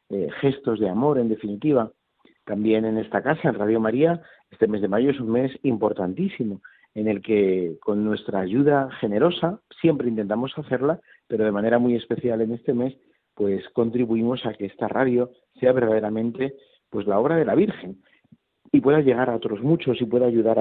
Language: Spanish